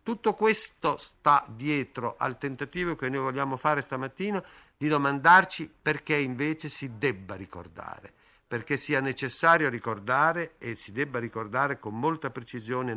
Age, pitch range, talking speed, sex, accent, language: 50-69, 110-145 Hz, 140 wpm, male, native, Italian